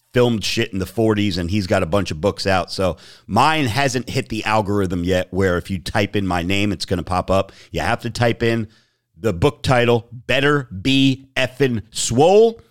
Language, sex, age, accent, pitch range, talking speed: English, male, 40-59, American, 95-125 Hz, 210 wpm